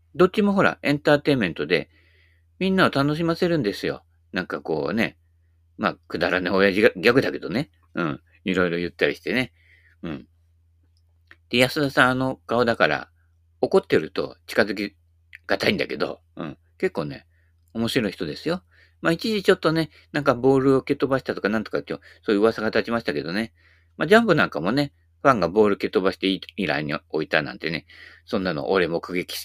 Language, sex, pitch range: Japanese, male, 85-135 Hz